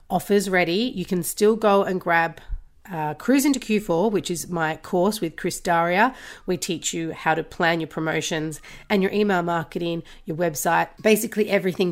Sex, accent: female, Australian